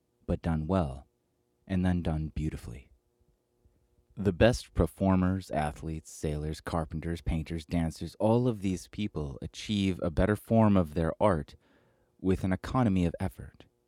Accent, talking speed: American, 135 wpm